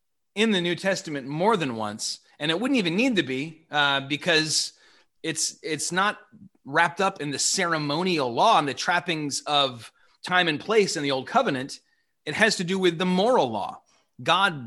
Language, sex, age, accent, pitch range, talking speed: English, male, 30-49, American, 145-195 Hz, 185 wpm